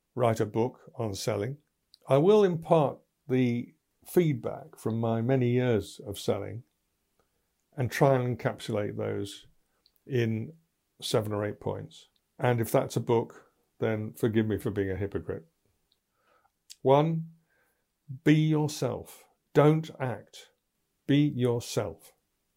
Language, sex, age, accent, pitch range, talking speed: English, male, 60-79, British, 105-135 Hz, 120 wpm